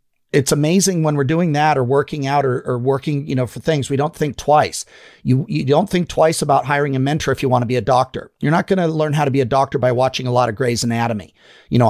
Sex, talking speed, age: male, 275 wpm, 40-59